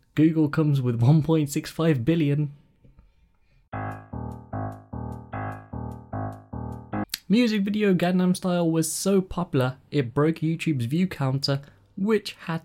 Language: English